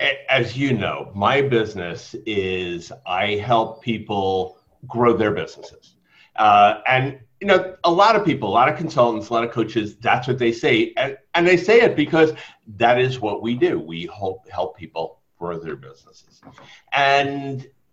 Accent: American